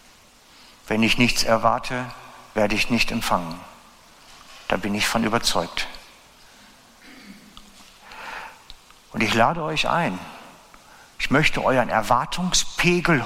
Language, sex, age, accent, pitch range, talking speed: German, male, 60-79, German, 130-195 Hz, 100 wpm